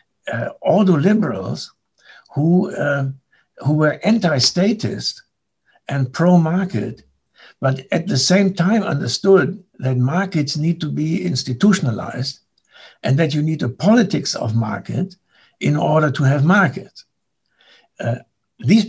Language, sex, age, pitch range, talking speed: English, male, 60-79, 125-175 Hz, 115 wpm